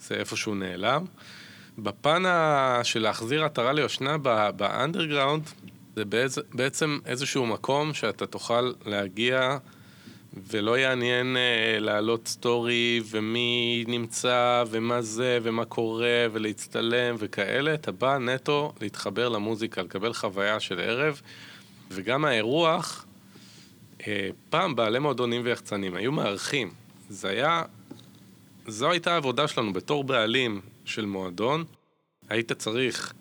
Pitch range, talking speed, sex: 105-130 Hz, 110 wpm, male